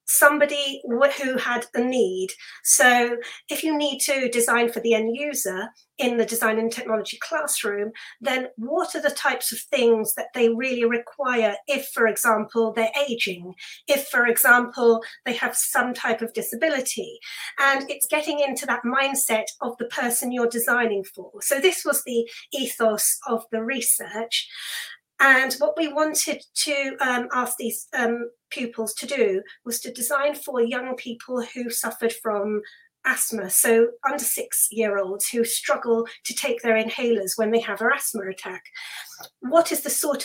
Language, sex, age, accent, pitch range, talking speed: English, female, 30-49, British, 225-275 Hz, 160 wpm